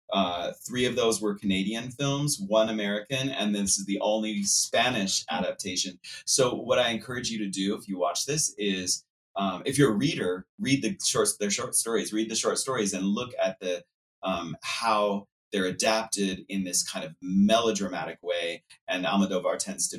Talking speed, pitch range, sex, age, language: 185 wpm, 95-125 Hz, male, 30-49, English